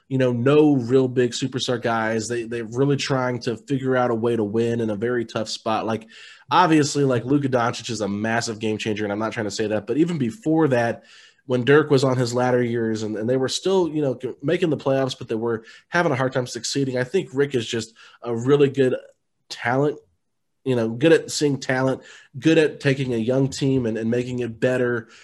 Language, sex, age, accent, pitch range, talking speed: English, male, 20-39, American, 115-140 Hz, 225 wpm